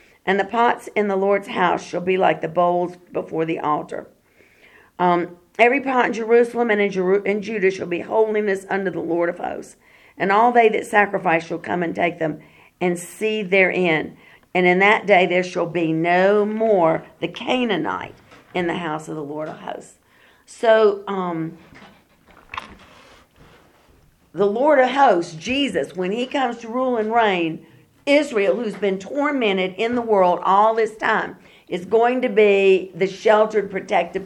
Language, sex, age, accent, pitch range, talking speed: English, female, 50-69, American, 175-220 Hz, 170 wpm